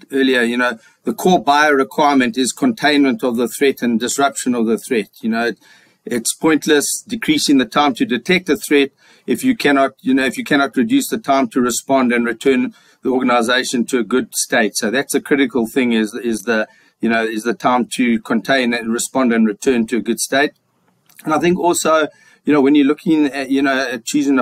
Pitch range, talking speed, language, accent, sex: 125-150 Hz, 210 wpm, English, South African, male